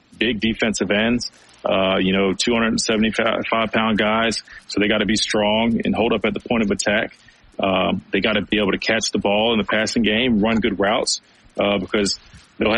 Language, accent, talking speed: English, American, 205 wpm